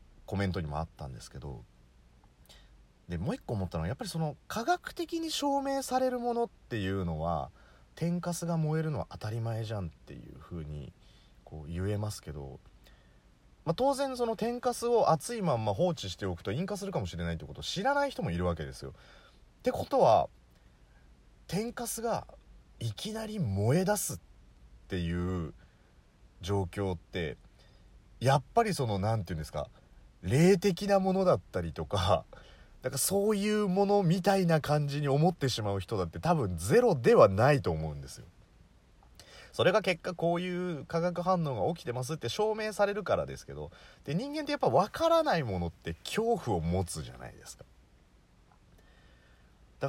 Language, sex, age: Japanese, male, 30-49